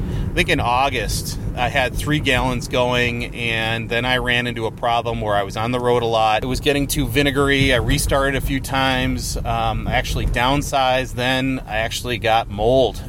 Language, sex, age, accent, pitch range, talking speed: English, male, 30-49, American, 105-130 Hz, 195 wpm